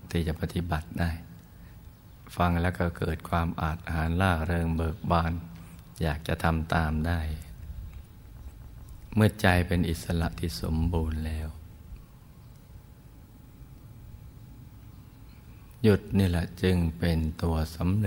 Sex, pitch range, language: male, 85-95 Hz, Thai